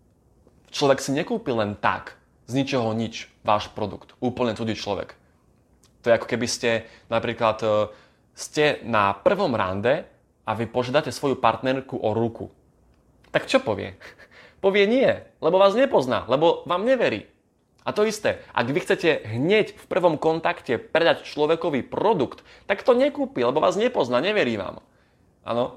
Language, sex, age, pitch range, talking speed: Slovak, male, 20-39, 115-150 Hz, 145 wpm